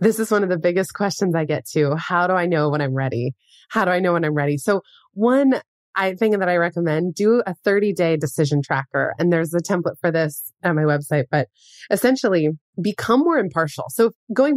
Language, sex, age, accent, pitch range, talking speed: English, female, 20-39, American, 160-230 Hz, 210 wpm